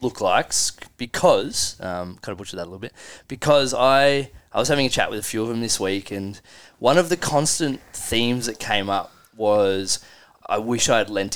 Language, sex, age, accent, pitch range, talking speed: English, male, 20-39, Australian, 95-115 Hz, 210 wpm